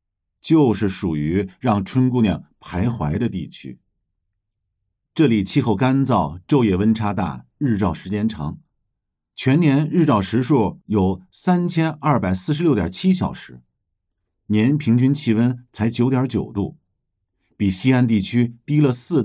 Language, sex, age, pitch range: Chinese, male, 50-69, 95-135 Hz